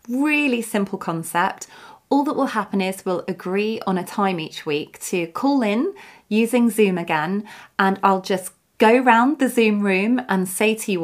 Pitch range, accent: 175-230 Hz, British